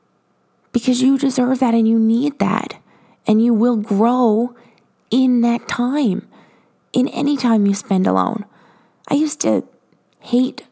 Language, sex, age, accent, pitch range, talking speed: English, female, 20-39, American, 200-240 Hz, 140 wpm